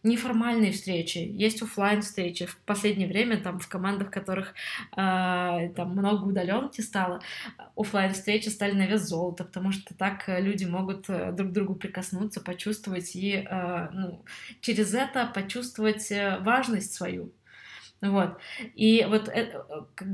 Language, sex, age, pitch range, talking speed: Russian, female, 20-39, 185-215 Hz, 135 wpm